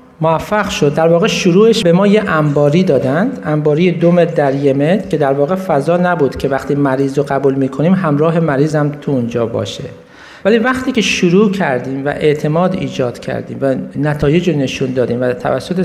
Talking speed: 170 wpm